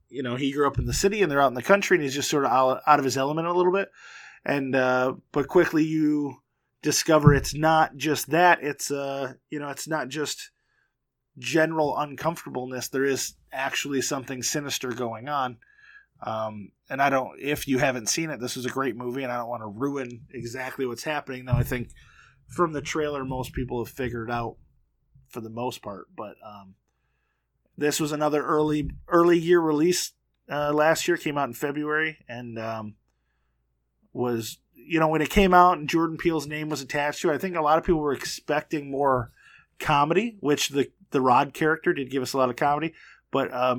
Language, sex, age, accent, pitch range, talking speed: English, male, 20-39, American, 125-155 Hz, 200 wpm